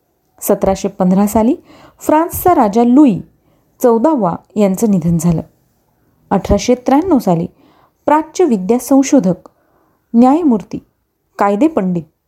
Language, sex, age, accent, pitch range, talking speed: Marathi, female, 30-49, native, 200-275 Hz, 95 wpm